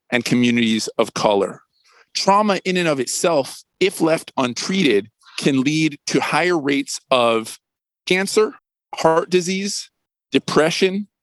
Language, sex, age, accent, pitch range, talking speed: English, male, 40-59, American, 140-185 Hz, 120 wpm